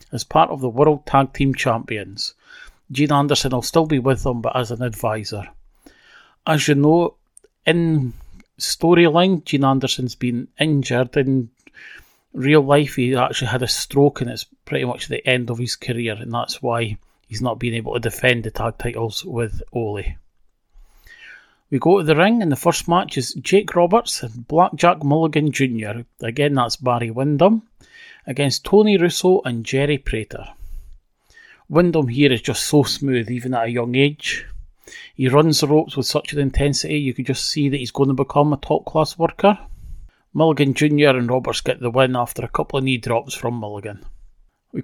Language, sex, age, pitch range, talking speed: English, male, 40-59, 120-150 Hz, 180 wpm